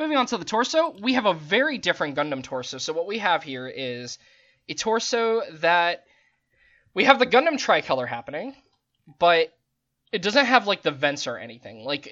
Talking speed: 185 wpm